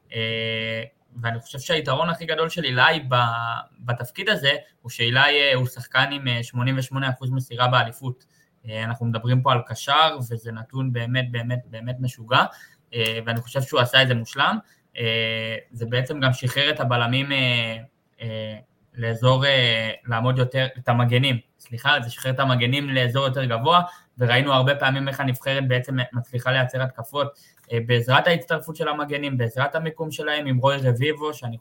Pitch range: 120-140 Hz